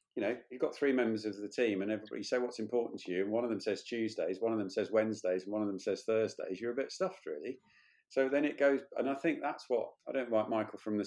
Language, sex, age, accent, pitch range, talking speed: English, male, 50-69, British, 105-140 Hz, 285 wpm